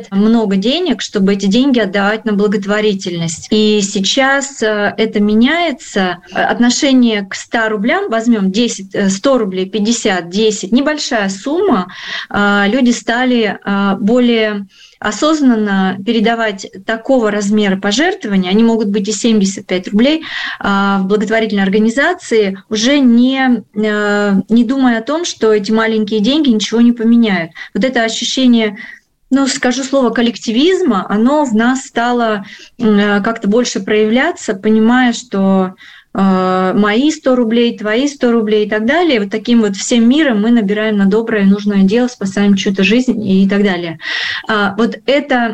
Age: 30-49